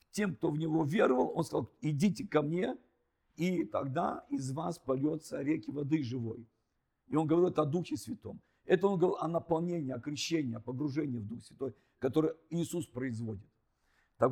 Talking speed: 170 wpm